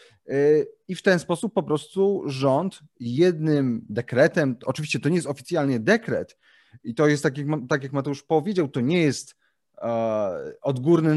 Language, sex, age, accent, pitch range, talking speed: Polish, male, 30-49, native, 135-190 Hz, 145 wpm